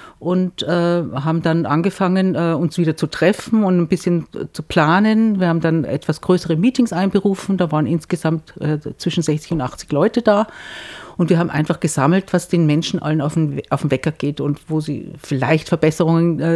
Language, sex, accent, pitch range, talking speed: German, female, German, 160-205 Hz, 190 wpm